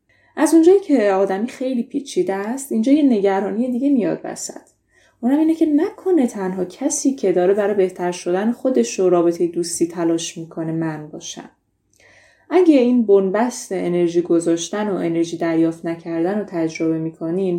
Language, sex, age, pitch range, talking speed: Persian, female, 20-39, 175-245 Hz, 150 wpm